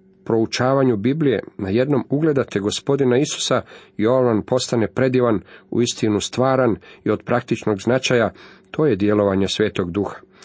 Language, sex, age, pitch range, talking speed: Croatian, male, 40-59, 95-125 Hz, 130 wpm